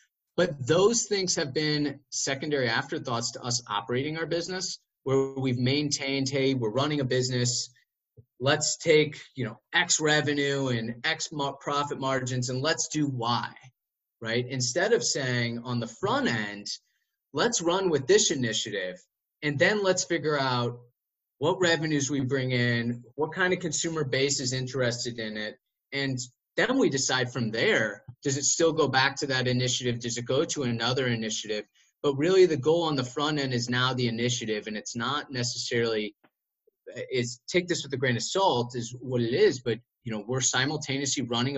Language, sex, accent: English, male, American